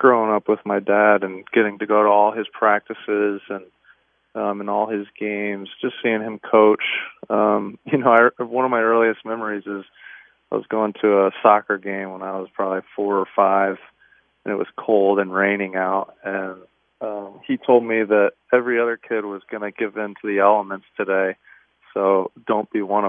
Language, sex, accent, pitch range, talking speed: English, male, American, 100-110 Hz, 195 wpm